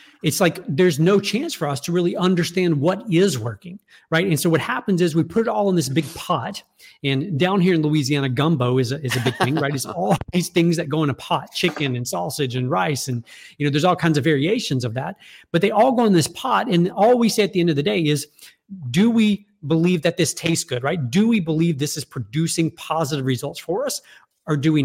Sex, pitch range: male, 150-195 Hz